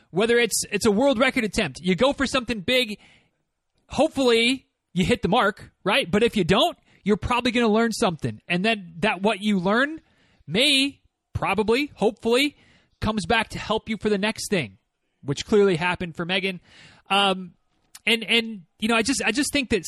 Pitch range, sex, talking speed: 195-240 Hz, male, 185 wpm